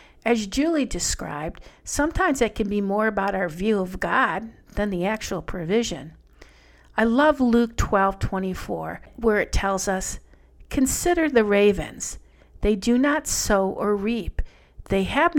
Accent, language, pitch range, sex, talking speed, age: American, English, 190-255 Hz, female, 145 wpm, 50-69